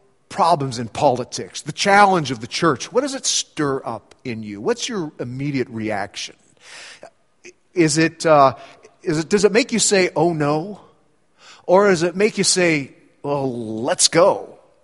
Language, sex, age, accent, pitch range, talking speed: English, male, 40-59, American, 155-220 Hz, 160 wpm